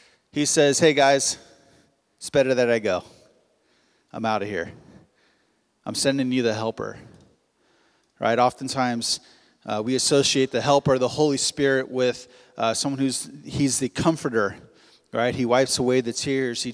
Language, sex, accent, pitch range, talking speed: English, male, American, 120-140 Hz, 150 wpm